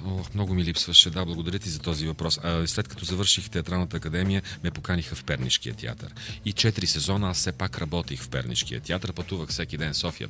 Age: 40-59